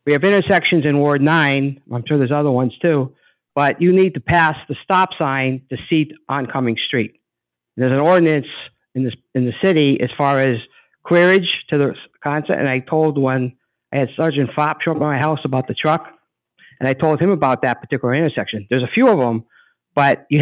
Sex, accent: male, American